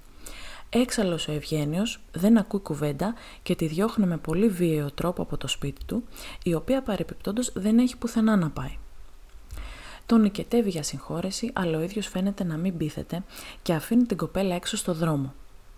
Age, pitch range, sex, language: 20-39, 150-220 Hz, female, Greek